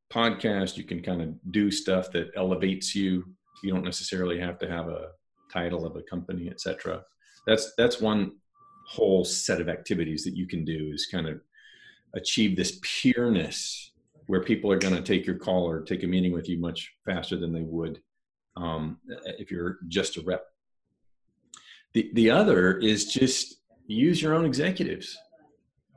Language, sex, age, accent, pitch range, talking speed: English, male, 40-59, American, 90-135 Hz, 165 wpm